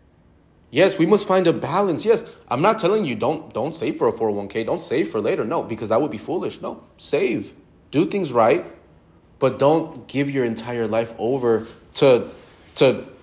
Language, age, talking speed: English, 30-49, 185 wpm